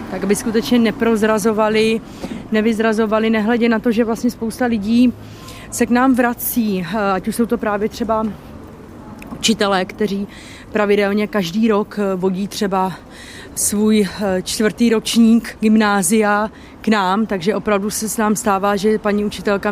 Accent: native